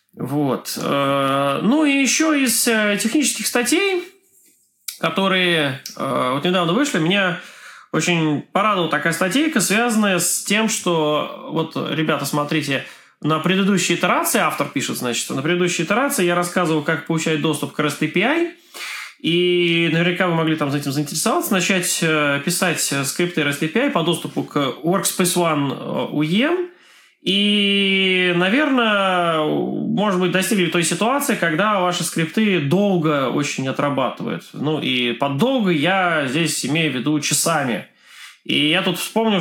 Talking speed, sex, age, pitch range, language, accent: 130 wpm, male, 20-39, 150-195 Hz, Russian, native